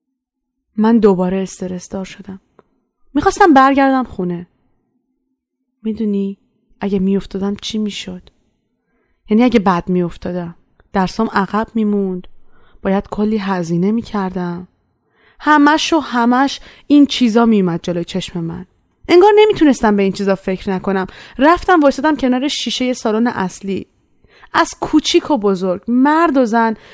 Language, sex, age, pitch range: Persian, female, 20-39, 195-270 Hz